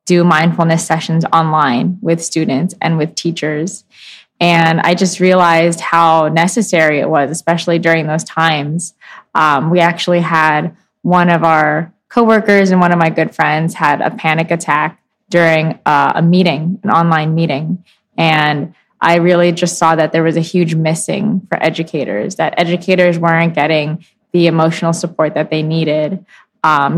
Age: 20-39